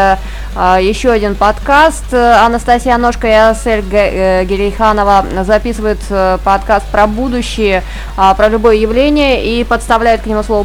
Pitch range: 190-245 Hz